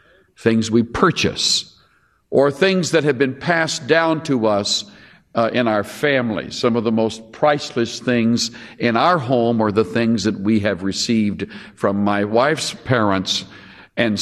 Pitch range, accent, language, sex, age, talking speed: 110-140 Hz, American, English, male, 60-79, 155 wpm